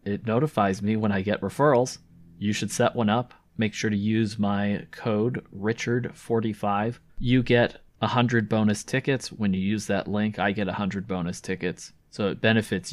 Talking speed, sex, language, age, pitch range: 170 wpm, male, English, 30-49, 100-120 Hz